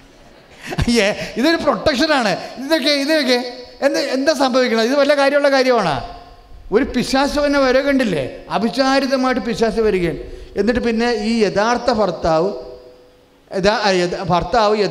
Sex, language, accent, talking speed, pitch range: male, English, Indian, 70 wpm, 170-245 Hz